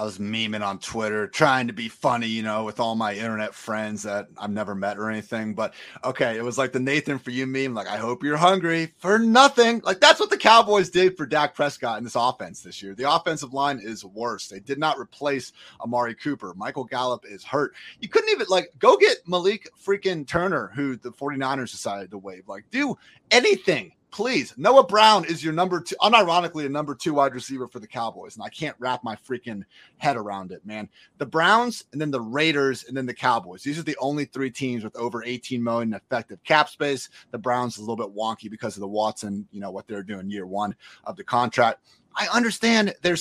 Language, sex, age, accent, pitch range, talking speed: English, male, 30-49, American, 115-170 Hz, 220 wpm